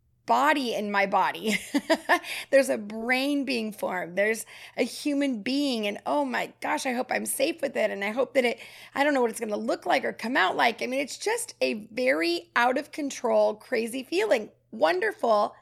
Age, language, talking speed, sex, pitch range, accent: 30-49, English, 205 wpm, female, 230-305 Hz, American